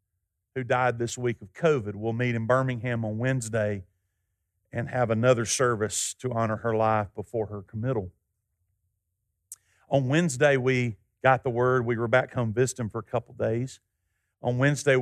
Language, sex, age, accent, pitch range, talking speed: English, male, 50-69, American, 105-125 Hz, 160 wpm